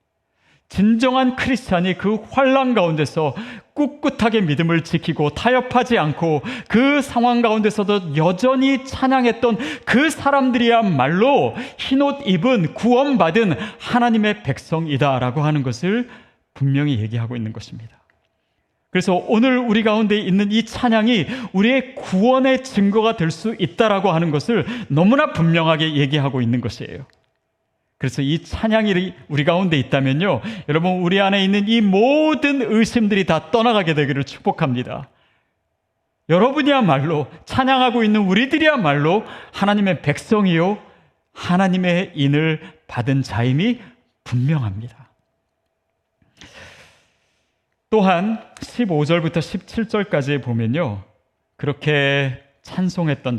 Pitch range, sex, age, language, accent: 150-235 Hz, male, 40-59, Korean, native